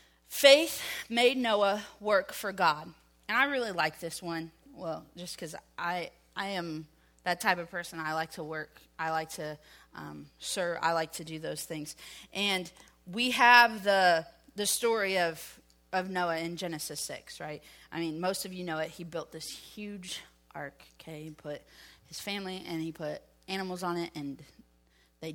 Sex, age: female, 30-49